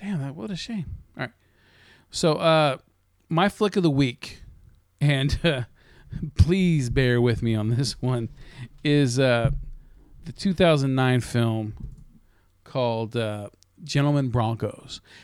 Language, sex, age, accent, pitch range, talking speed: English, male, 40-59, American, 115-160 Hz, 120 wpm